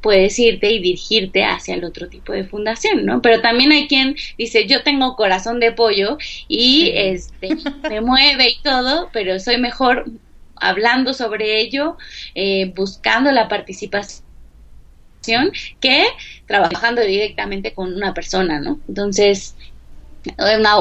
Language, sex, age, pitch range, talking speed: Spanish, female, 20-39, 190-245 Hz, 130 wpm